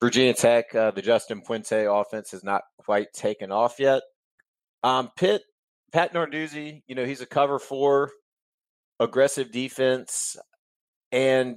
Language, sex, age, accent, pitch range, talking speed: English, male, 30-49, American, 105-140 Hz, 135 wpm